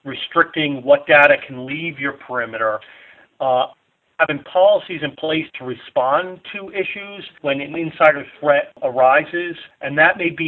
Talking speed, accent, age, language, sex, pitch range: 145 wpm, American, 40-59, English, male, 125-155 Hz